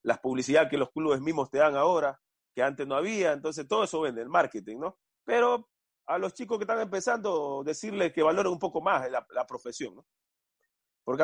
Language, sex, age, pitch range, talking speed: Spanish, male, 30-49, 140-190 Hz, 205 wpm